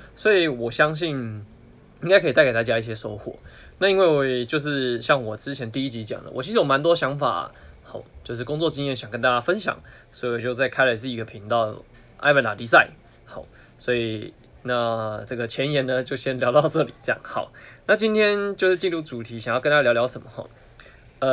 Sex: male